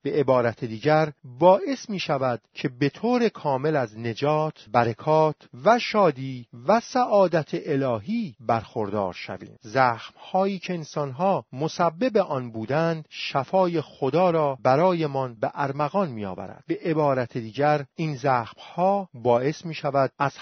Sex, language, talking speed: male, Persian, 130 wpm